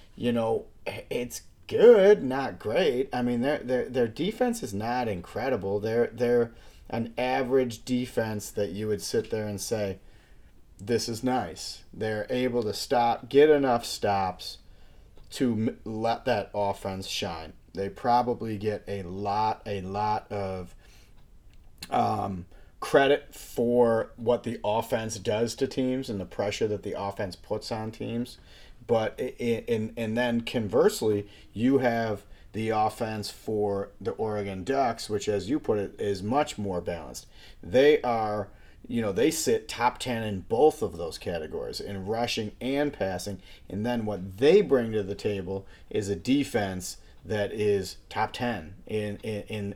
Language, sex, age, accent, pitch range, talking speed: English, male, 40-59, American, 100-120 Hz, 150 wpm